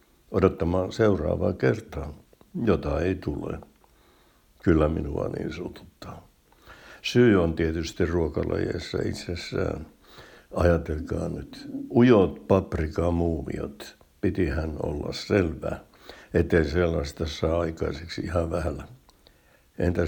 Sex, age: male, 60-79